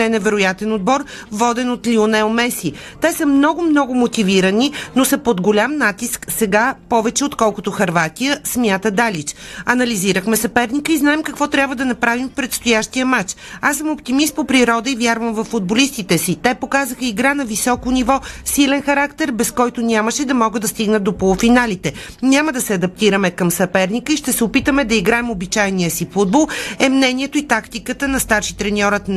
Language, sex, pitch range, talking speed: Bulgarian, female, 210-265 Hz, 170 wpm